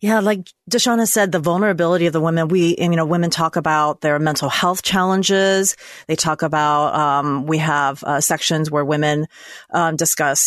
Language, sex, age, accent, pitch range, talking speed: English, female, 30-49, American, 160-195 Hz, 190 wpm